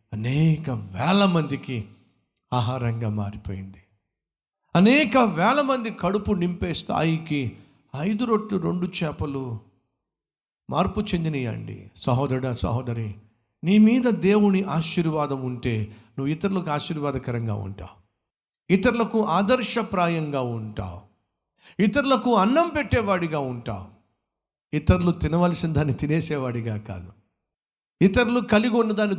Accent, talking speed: native, 90 wpm